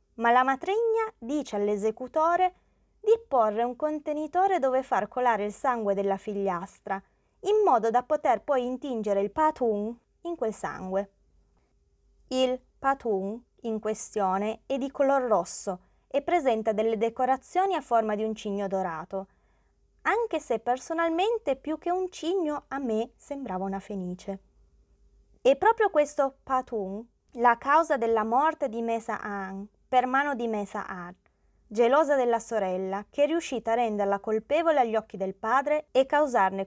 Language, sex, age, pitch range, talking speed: Italian, female, 20-39, 200-270 Hz, 145 wpm